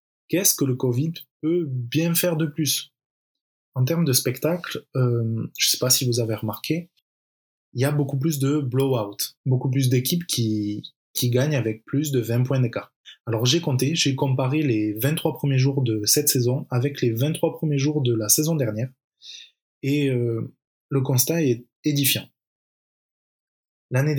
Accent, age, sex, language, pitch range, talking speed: French, 20-39, male, French, 125-150 Hz, 170 wpm